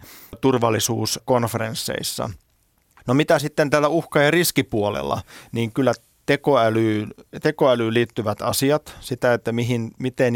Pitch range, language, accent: 110-135 Hz, Finnish, native